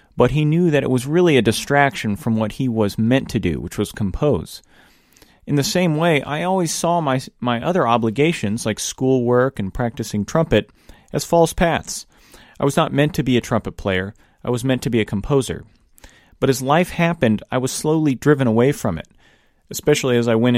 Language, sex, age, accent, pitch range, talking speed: English, male, 30-49, American, 110-145 Hz, 200 wpm